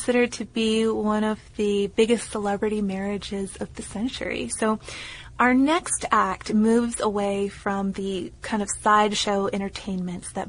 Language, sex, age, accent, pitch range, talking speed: English, female, 20-39, American, 200-235 Hz, 145 wpm